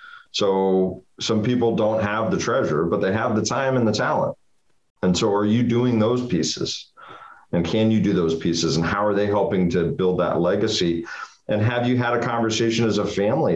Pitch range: 95-125 Hz